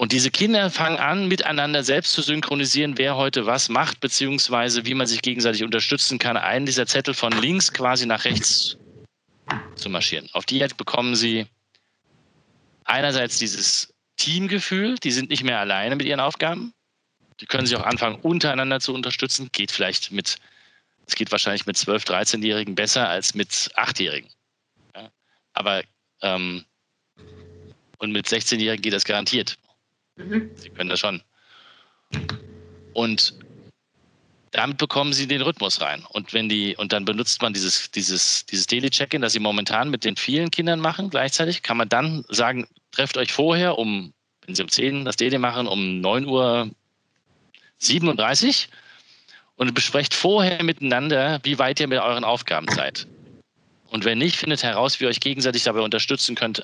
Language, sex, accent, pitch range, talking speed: German, male, German, 110-150 Hz, 160 wpm